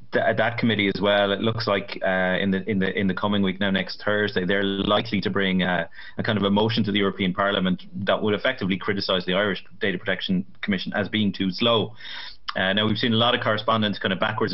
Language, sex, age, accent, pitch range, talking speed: English, male, 30-49, Irish, 95-110 Hz, 235 wpm